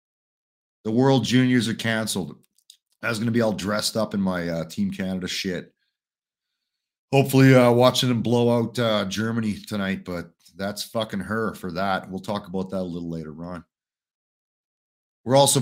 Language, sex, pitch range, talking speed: English, male, 95-125 Hz, 170 wpm